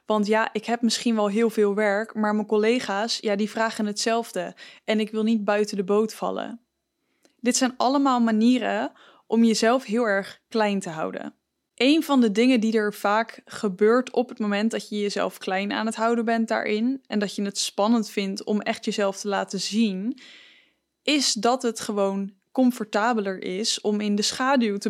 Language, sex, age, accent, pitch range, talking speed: English, female, 10-29, Dutch, 205-240 Hz, 185 wpm